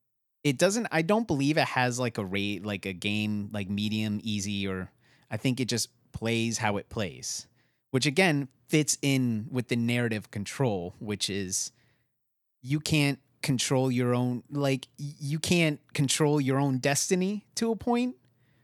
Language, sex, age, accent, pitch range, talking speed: English, male, 30-49, American, 115-140 Hz, 160 wpm